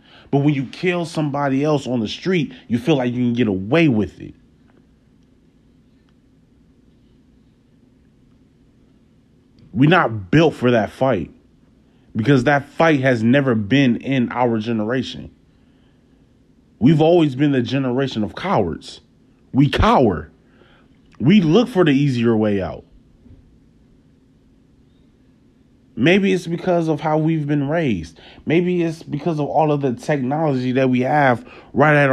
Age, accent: 30-49, American